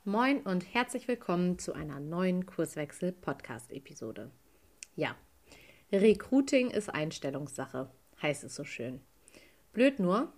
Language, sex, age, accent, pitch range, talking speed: German, female, 30-49, German, 160-205 Hz, 105 wpm